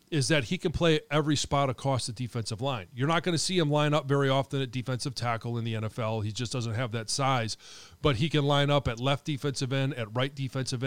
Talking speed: 250 wpm